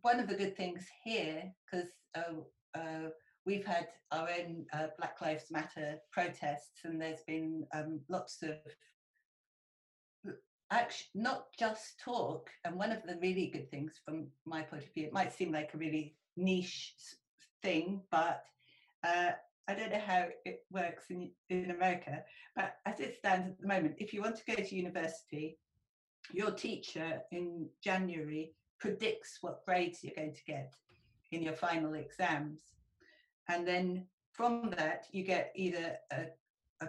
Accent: British